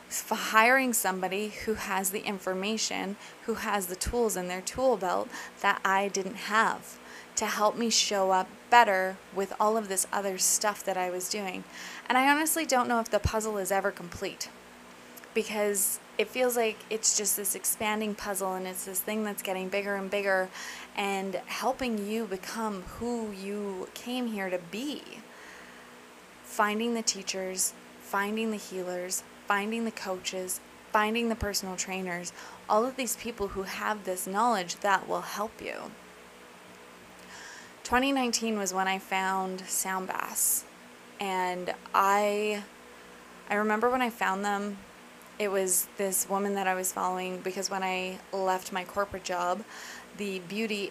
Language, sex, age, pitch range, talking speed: English, female, 20-39, 185-215 Hz, 155 wpm